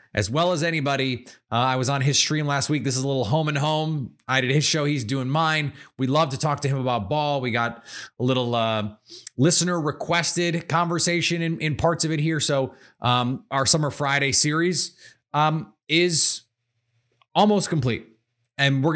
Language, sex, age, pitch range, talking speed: English, male, 30-49, 115-150 Hz, 190 wpm